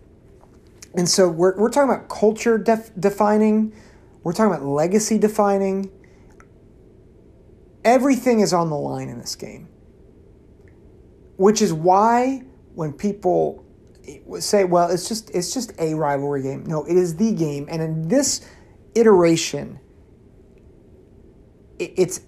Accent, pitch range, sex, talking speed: American, 155-215 Hz, male, 120 wpm